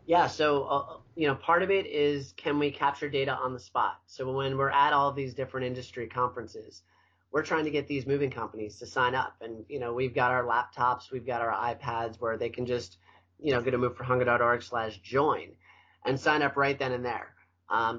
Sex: male